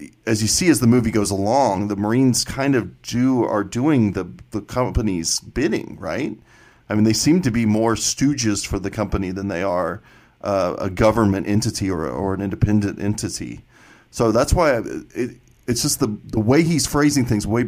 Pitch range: 100-115 Hz